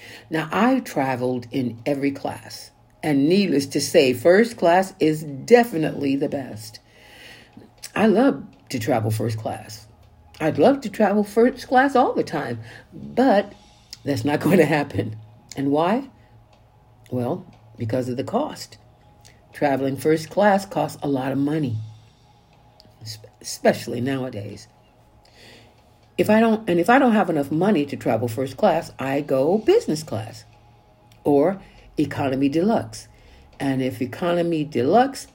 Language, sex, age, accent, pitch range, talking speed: English, female, 60-79, American, 120-180 Hz, 135 wpm